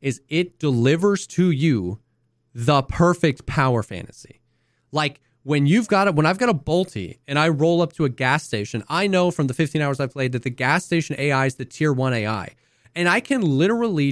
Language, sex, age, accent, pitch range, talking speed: English, male, 30-49, American, 130-170 Hz, 215 wpm